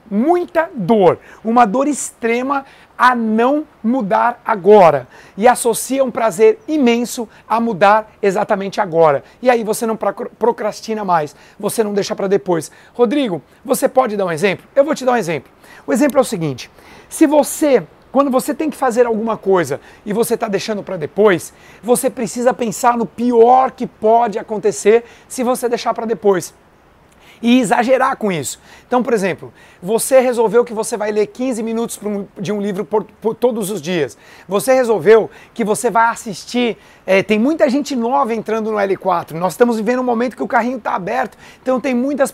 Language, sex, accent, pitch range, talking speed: Portuguese, male, Brazilian, 205-255 Hz, 175 wpm